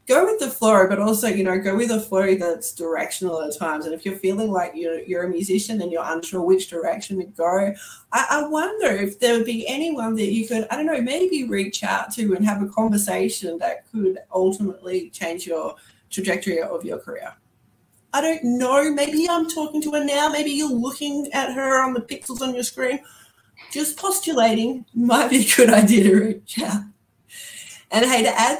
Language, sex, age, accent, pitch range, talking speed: English, female, 30-49, Australian, 190-255 Hz, 205 wpm